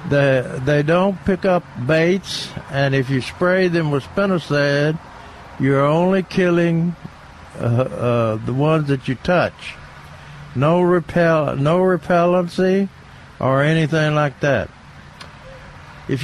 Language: English